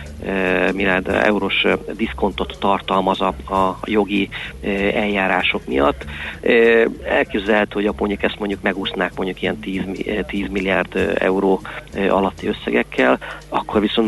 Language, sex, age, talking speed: Hungarian, male, 40-59, 105 wpm